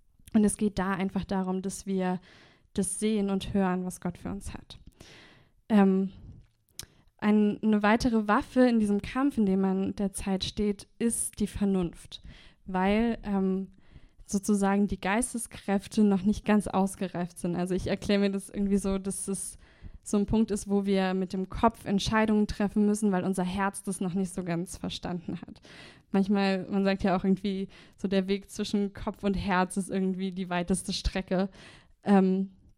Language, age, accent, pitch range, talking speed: German, 20-39, German, 190-210 Hz, 170 wpm